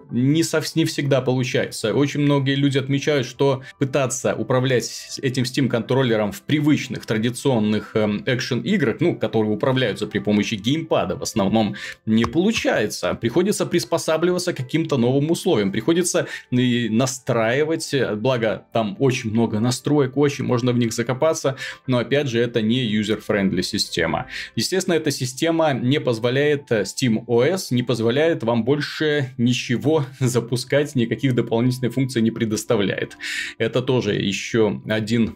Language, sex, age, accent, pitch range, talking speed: Russian, male, 20-39, native, 115-140 Hz, 135 wpm